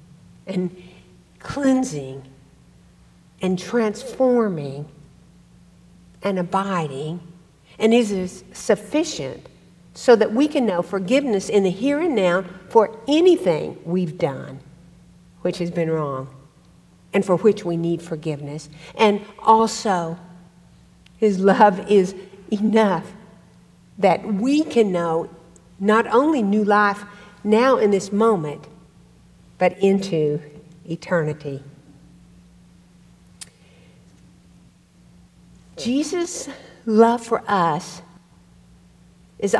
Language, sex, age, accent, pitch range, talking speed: English, female, 60-79, American, 155-215 Hz, 90 wpm